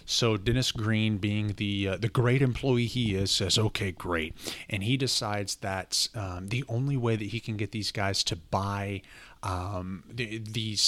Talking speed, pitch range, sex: 175 wpm, 100-125 Hz, male